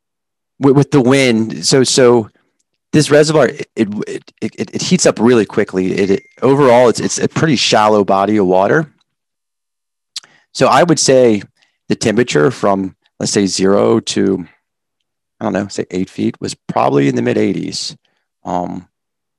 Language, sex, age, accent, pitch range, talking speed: English, male, 30-49, American, 95-120 Hz, 150 wpm